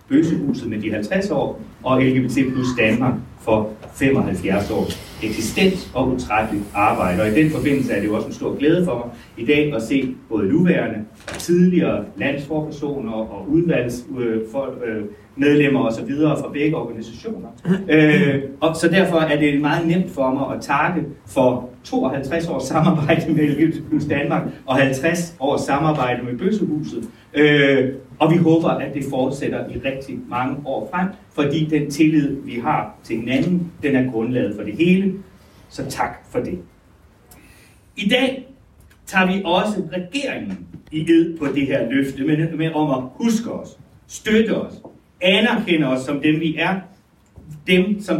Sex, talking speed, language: male, 160 wpm, Danish